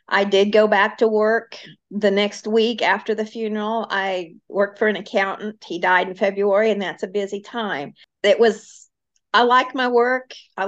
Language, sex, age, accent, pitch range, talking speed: English, female, 50-69, American, 190-225 Hz, 185 wpm